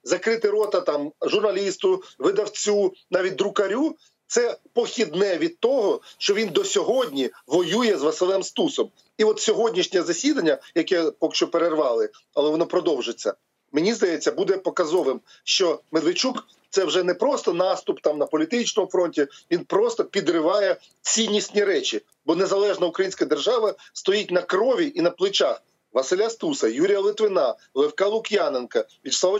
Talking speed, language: 135 wpm, Ukrainian